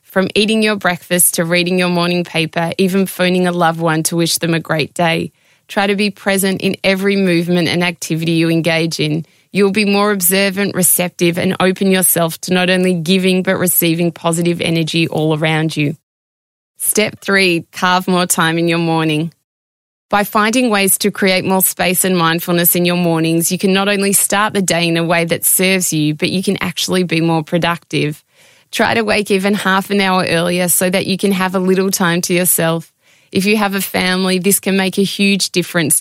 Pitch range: 165-190 Hz